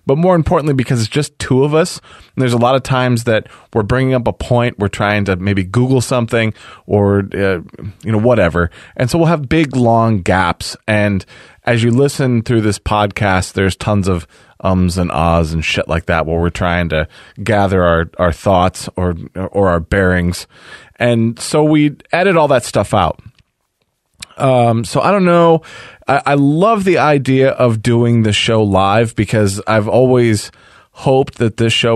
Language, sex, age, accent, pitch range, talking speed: English, male, 20-39, American, 100-125 Hz, 185 wpm